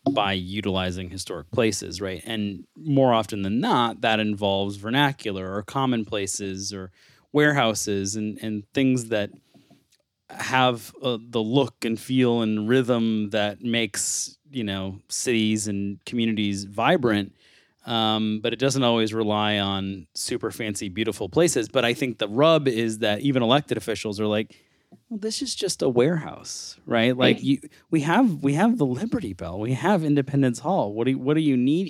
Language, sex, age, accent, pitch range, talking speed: English, male, 30-49, American, 100-130 Hz, 165 wpm